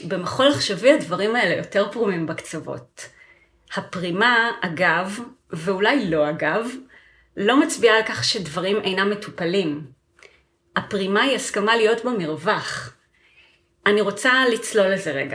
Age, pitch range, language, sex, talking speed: 30-49, 180-225 Hz, Hebrew, female, 115 wpm